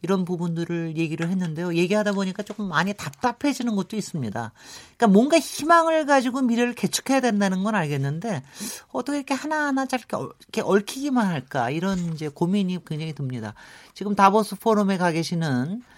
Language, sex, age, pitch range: Korean, male, 40-59, 135-195 Hz